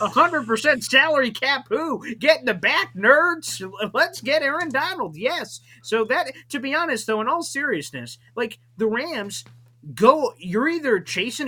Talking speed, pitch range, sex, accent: 155 wpm, 185-275 Hz, male, American